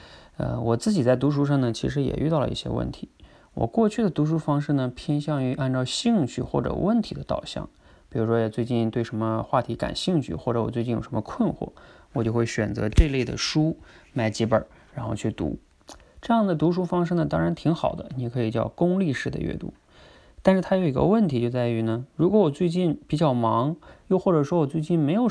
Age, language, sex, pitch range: 20-39, Chinese, male, 120-165 Hz